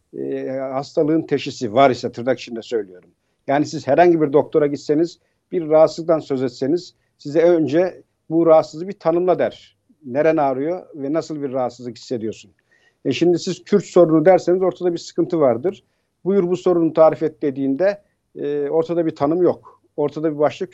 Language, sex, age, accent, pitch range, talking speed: Turkish, male, 50-69, native, 145-185 Hz, 160 wpm